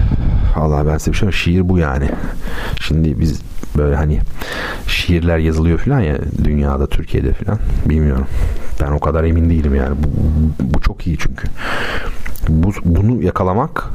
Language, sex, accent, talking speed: Turkish, male, native, 140 wpm